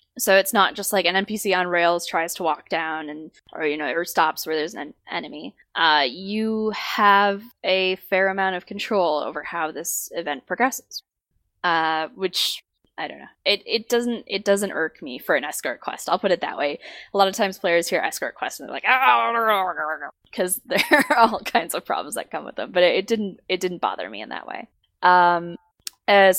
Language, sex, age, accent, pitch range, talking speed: English, female, 10-29, American, 170-210 Hz, 210 wpm